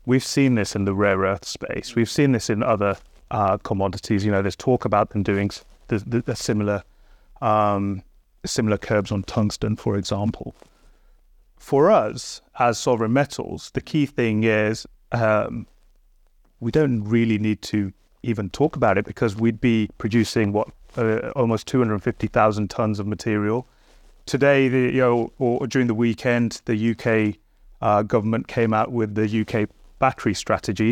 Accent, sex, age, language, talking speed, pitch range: British, male, 30-49, English, 160 wpm, 105-120 Hz